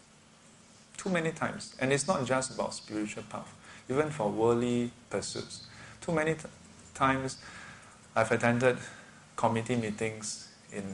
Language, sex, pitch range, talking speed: English, male, 105-135 Hz, 125 wpm